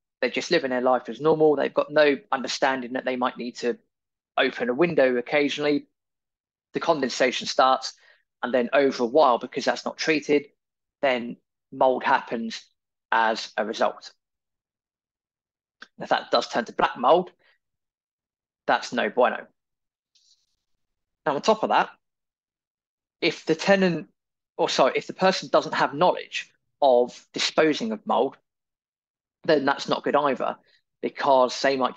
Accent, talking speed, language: British, 145 wpm, English